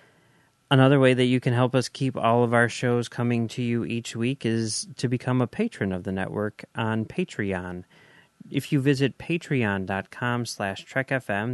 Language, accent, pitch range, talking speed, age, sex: English, American, 100-125 Hz, 165 wpm, 30-49, male